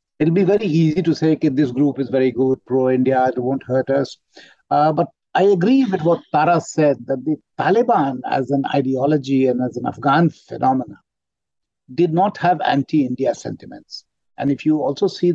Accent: Indian